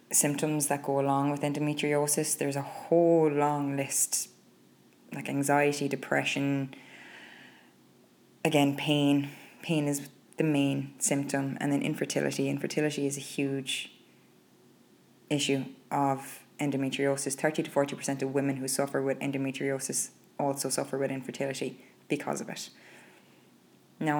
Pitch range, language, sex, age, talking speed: 140-150 Hz, English, female, 20-39, 115 wpm